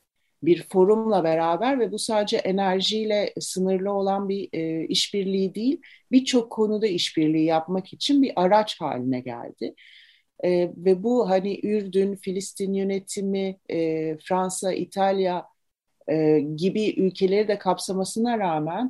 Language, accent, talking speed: Turkish, native, 120 wpm